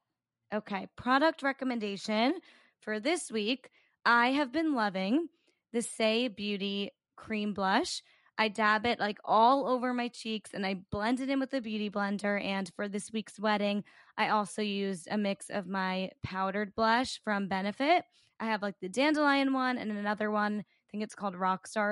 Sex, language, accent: female, English, American